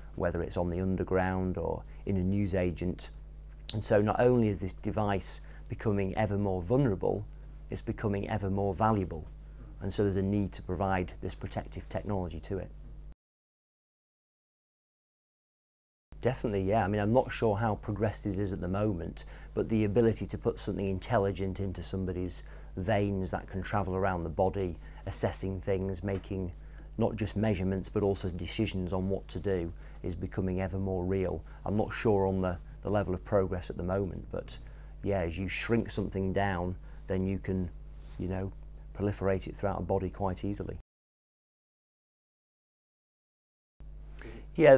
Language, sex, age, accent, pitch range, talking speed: English, male, 40-59, British, 90-105 Hz, 160 wpm